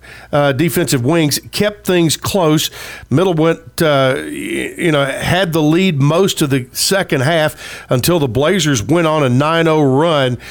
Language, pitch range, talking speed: English, 135-165 Hz, 160 wpm